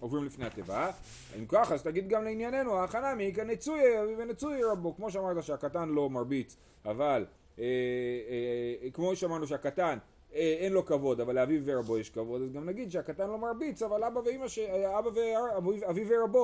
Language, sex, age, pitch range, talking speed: Hebrew, male, 30-49, 125-185 Hz, 170 wpm